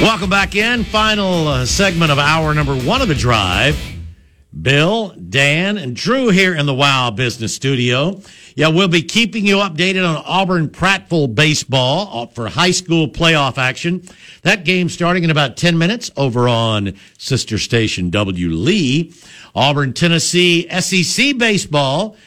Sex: male